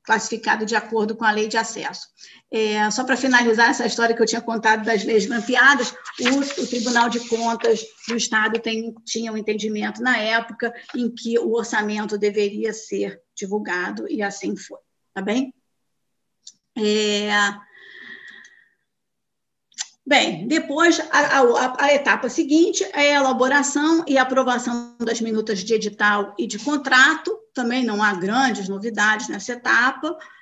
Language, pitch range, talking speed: Portuguese, 215-260 Hz, 135 wpm